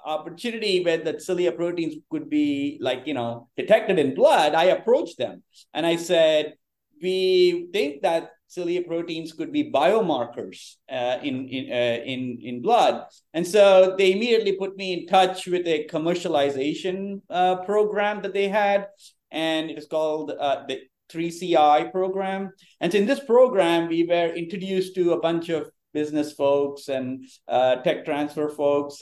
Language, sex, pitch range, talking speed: English, male, 150-200 Hz, 160 wpm